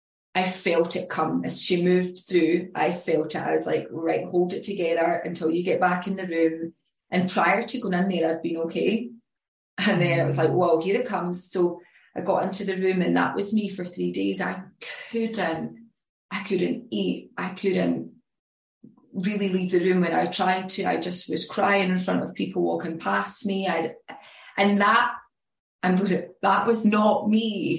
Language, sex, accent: English, female, British